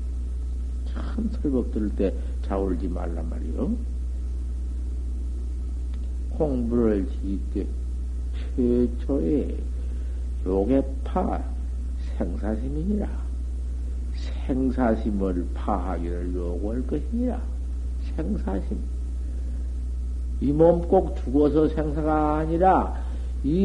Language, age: Korean, 60-79